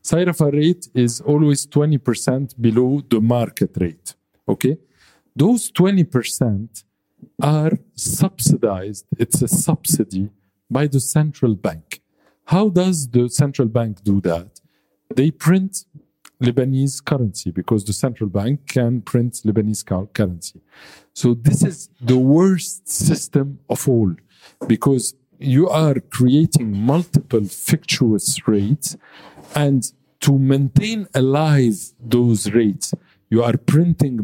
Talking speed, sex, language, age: 110 wpm, male, English, 50-69